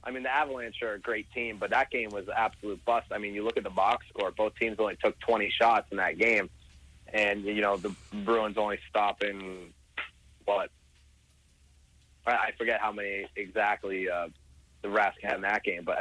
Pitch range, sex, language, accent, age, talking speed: 70-115 Hz, male, English, American, 30-49, 205 wpm